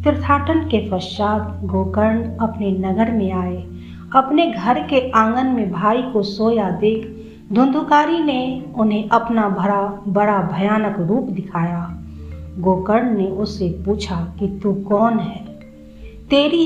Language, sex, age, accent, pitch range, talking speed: Hindi, female, 50-69, native, 185-235 Hz, 125 wpm